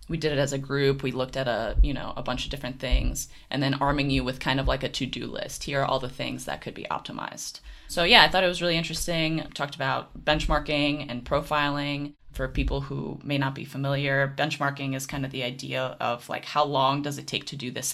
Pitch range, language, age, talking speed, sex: 130-145 Hz, English, 20-39, 245 wpm, female